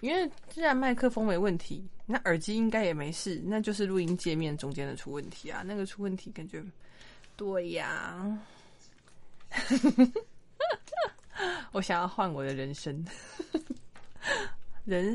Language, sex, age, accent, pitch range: Chinese, female, 20-39, native, 155-215 Hz